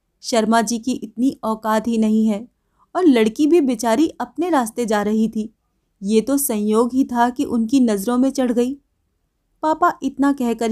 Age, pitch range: 30-49, 210-260 Hz